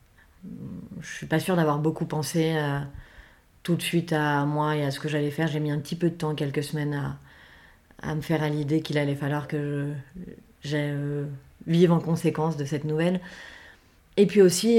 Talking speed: 205 wpm